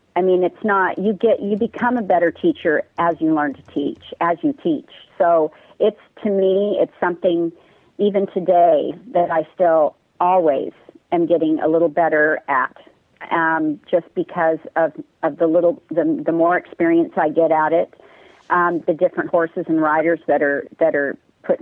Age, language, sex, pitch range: 40-59, English, female, 165-210 Hz